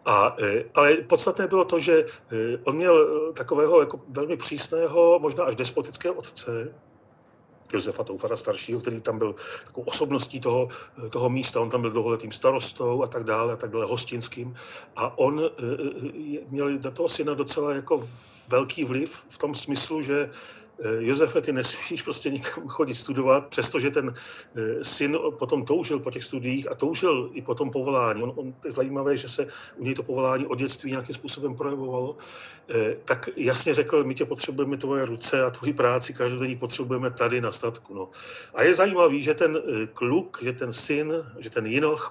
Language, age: Czech, 40-59